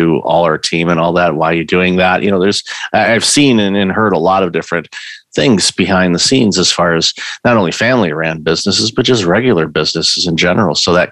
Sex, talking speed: male, 225 wpm